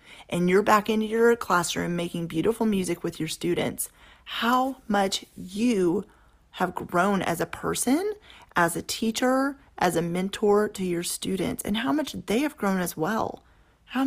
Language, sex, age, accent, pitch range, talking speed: English, female, 30-49, American, 180-240 Hz, 160 wpm